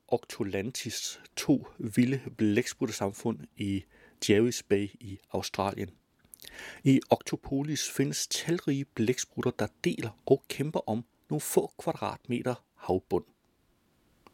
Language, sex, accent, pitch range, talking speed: Danish, male, native, 110-145 Hz, 95 wpm